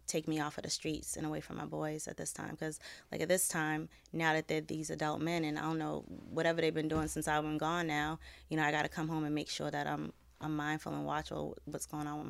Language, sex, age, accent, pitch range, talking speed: English, female, 20-39, American, 150-170 Hz, 285 wpm